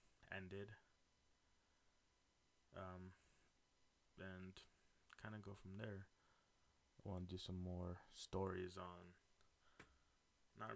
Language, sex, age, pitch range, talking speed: English, male, 20-39, 90-95 Hz, 95 wpm